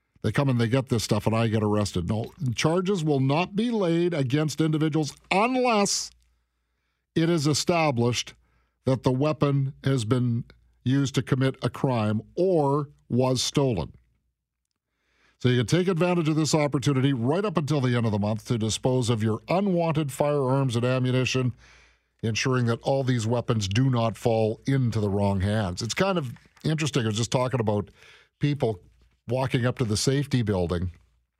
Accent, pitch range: American, 105-145 Hz